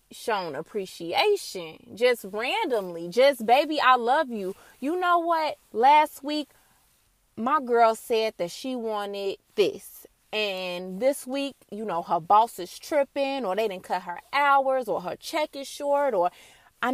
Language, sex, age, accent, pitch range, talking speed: English, female, 20-39, American, 220-320 Hz, 150 wpm